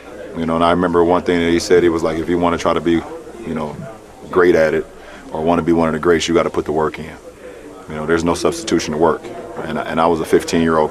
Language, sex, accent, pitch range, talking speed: English, male, American, 80-90 Hz, 310 wpm